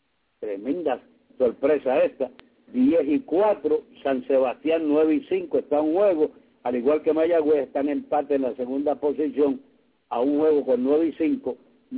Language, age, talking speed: English, 60-79, 160 wpm